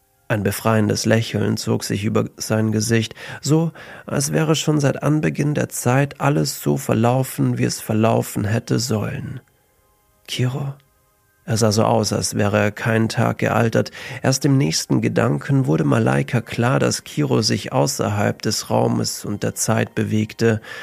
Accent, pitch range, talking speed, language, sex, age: German, 110-135 Hz, 150 wpm, German, male, 40-59